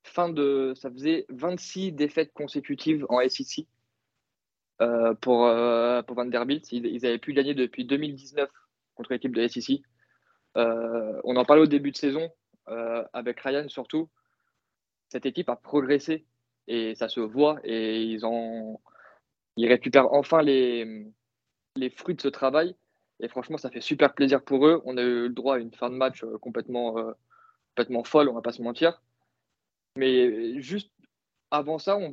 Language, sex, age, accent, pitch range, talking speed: French, male, 20-39, French, 120-155 Hz, 155 wpm